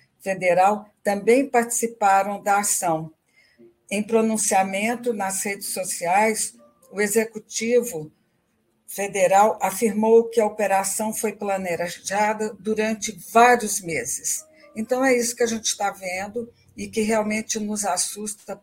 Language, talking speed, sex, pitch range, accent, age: Portuguese, 115 wpm, female, 190-230 Hz, Brazilian, 60-79